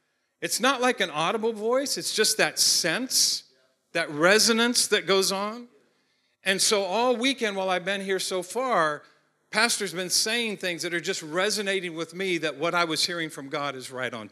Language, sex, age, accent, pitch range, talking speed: English, male, 50-69, American, 170-220 Hz, 190 wpm